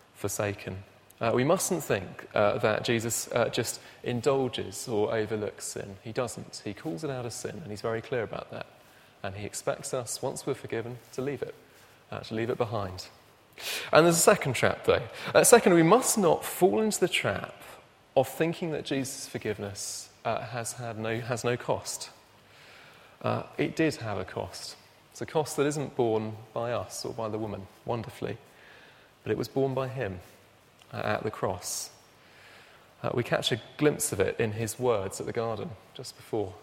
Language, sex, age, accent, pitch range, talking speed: English, male, 30-49, British, 105-130 Hz, 185 wpm